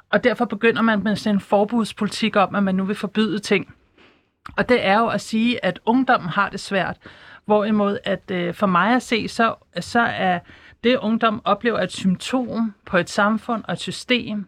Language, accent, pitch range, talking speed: Danish, native, 180-225 Hz, 185 wpm